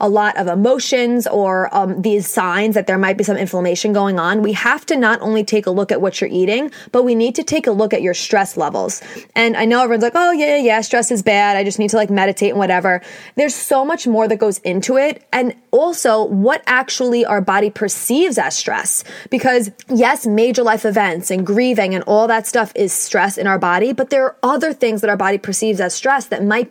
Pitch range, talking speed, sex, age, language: 200-245 Hz, 235 wpm, female, 20-39, English